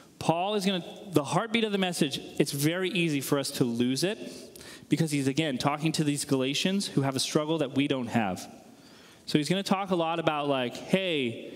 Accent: American